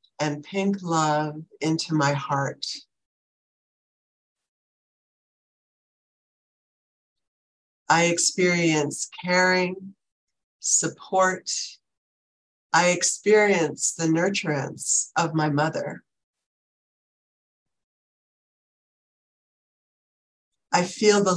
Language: English